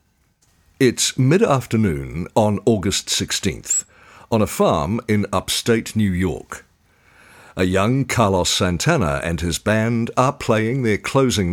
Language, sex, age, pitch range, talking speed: English, male, 50-69, 85-115 Hz, 120 wpm